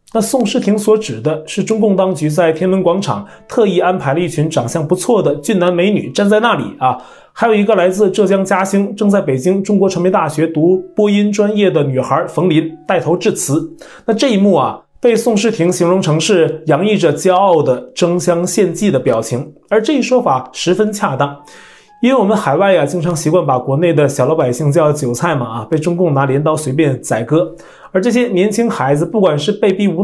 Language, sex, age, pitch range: Chinese, male, 20-39, 155-215 Hz